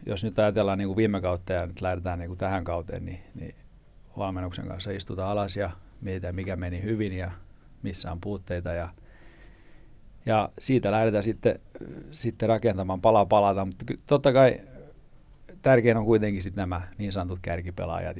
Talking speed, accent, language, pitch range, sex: 155 wpm, native, Finnish, 90-110 Hz, male